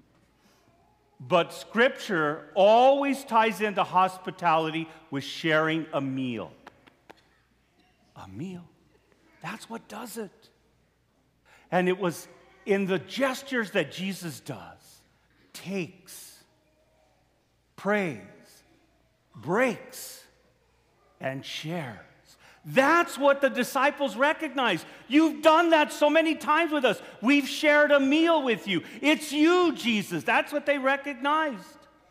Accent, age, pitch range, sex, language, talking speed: American, 50-69, 175-275 Hz, male, English, 105 wpm